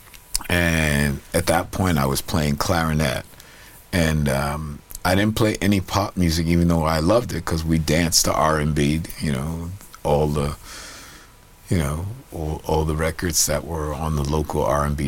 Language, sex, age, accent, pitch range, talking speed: English, male, 50-69, American, 75-90 Hz, 165 wpm